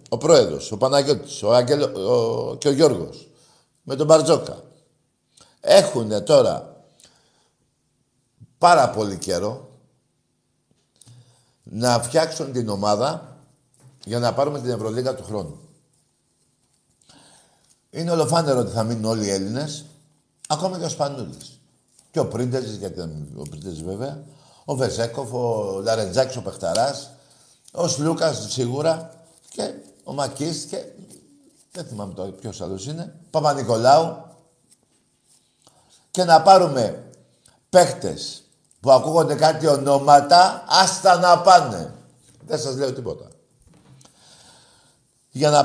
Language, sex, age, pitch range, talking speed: Greek, male, 60-79, 120-160 Hz, 110 wpm